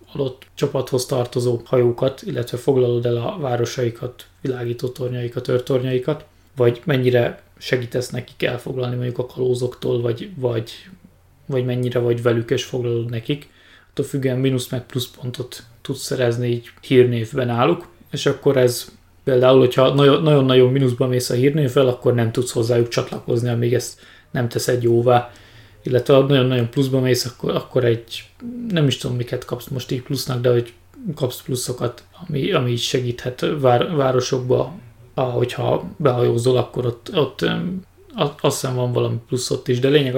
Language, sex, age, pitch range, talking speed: Hungarian, male, 20-39, 120-130 Hz, 150 wpm